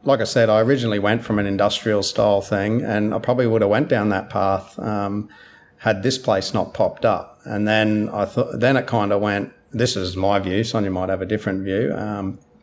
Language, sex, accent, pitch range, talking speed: English, male, Australian, 100-115 Hz, 225 wpm